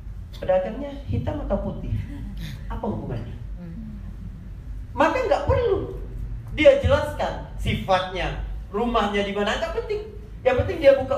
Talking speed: 115 wpm